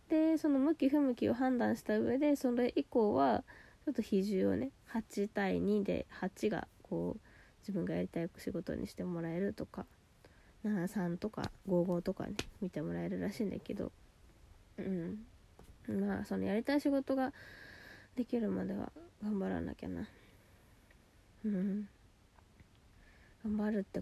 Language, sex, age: Japanese, female, 20-39